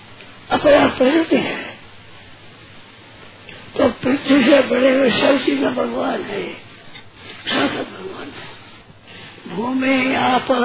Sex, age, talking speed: female, 50-69, 75 wpm